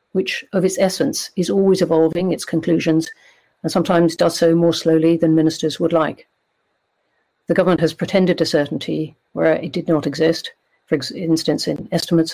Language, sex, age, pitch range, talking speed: English, female, 50-69, 160-180 Hz, 165 wpm